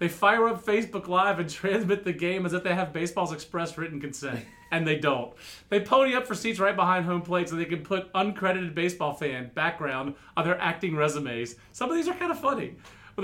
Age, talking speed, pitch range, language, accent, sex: 30-49, 220 wpm, 160-200 Hz, English, American, male